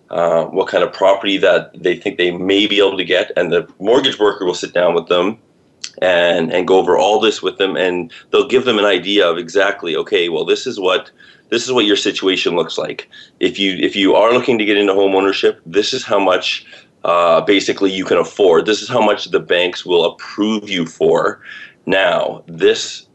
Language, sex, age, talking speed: English, male, 30-49, 215 wpm